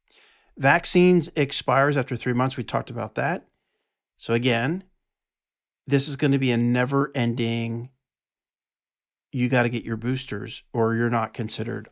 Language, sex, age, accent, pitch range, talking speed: English, male, 40-59, American, 115-140 Hz, 140 wpm